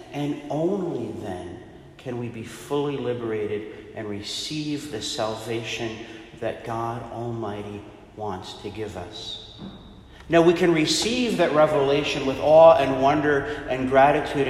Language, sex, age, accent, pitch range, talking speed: English, male, 40-59, American, 105-130 Hz, 130 wpm